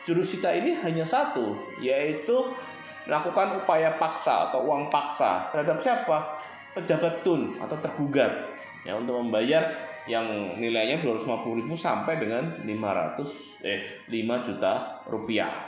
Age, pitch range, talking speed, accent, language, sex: 20-39, 110-165 Hz, 115 wpm, native, Indonesian, male